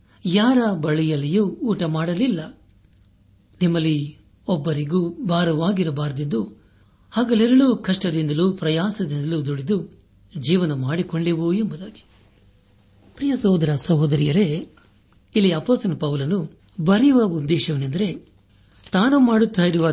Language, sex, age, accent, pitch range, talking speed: Kannada, male, 60-79, native, 125-190 Hz, 70 wpm